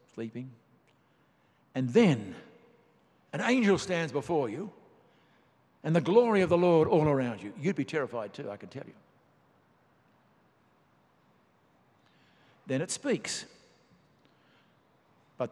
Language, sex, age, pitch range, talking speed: English, male, 60-79, 125-160 Hz, 110 wpm